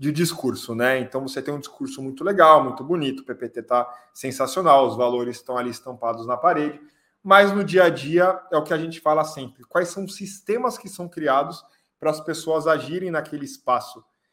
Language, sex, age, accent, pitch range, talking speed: Portuguese, male, 20-39, Brazilian, 130-165 Hz, 200 wpm